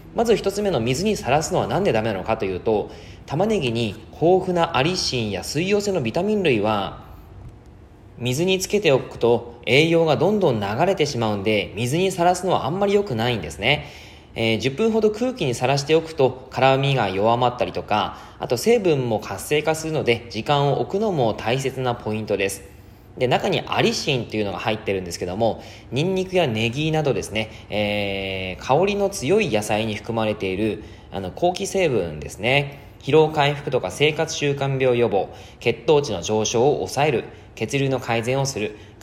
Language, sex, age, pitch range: Japanese, male, 20-39, 105-160 Hz